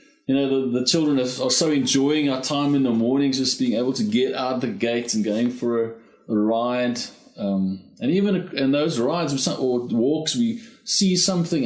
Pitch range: 105-175 Hz